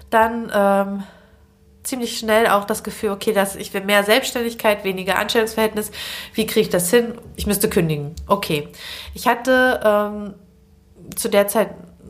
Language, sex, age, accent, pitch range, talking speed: German, female, 20-39, German, 195-230 Hz, 150 wpm